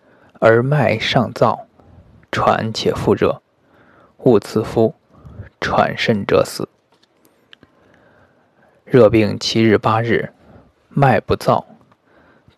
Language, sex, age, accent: Chinese, male, 20-39, native